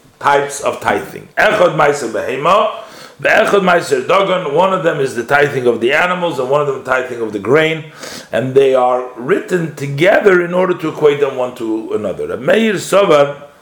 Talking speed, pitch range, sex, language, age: 150 wpm, 125-180 Hz, male, English, 50-69